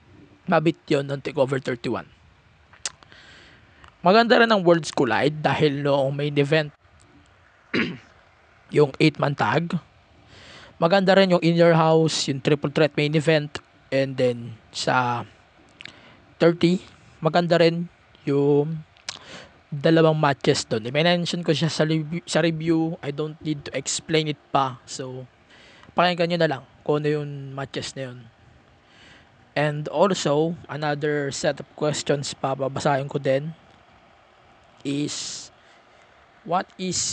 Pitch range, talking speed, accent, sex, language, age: 135-165 Hz, 120 wpm, Filipino, male, English, 20-39